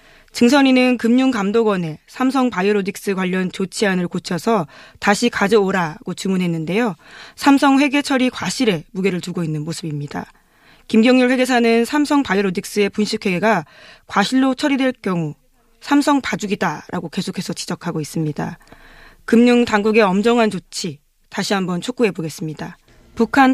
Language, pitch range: Korean, 180-245 Hz